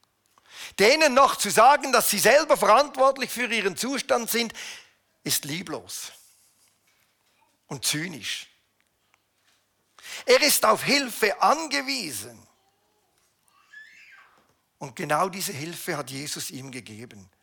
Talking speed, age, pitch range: 100 wpm, 50-69, 165-255 Hz